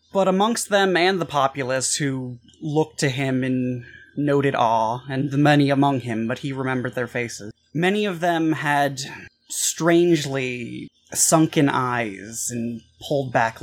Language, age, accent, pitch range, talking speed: English, 20-39, American, 120-150 Hz, 145 wpm